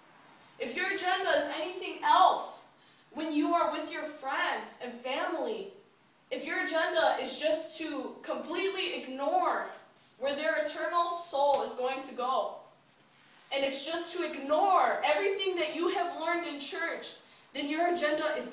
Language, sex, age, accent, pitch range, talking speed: English, female, 10-29, American, 265-335 Hz, 150 wpm